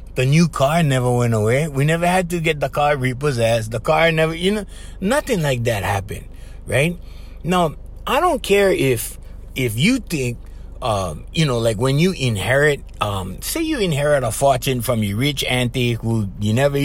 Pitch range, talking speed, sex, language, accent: 115-180 Hz, 185 wpm, male, English, American